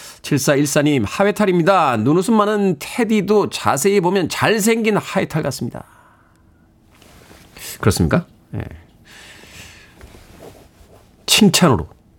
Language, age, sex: Korean, 40-59, male